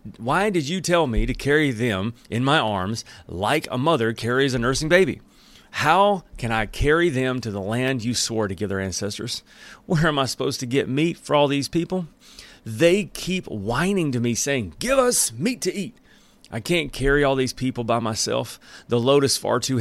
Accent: American